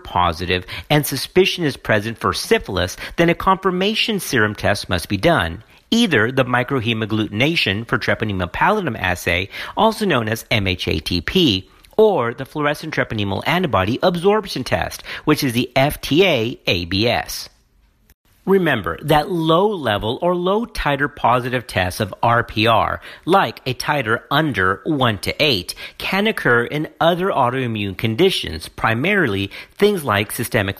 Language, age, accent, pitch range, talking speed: English, 50-69, American, 105-175 Hz, 125 wpm